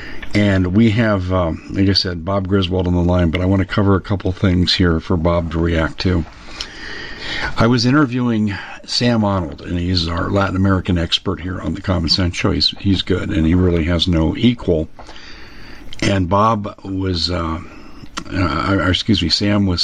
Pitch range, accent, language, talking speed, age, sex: 90-100 Hz, American, English, 185 wpm, 50-69, male